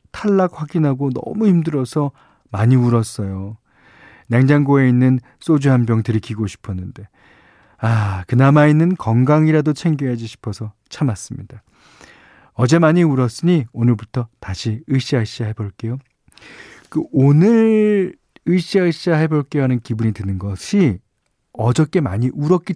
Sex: male